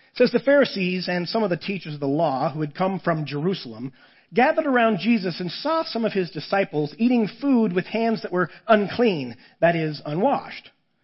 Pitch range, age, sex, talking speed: 160-220 Hz, 40-59, male, 190 wpm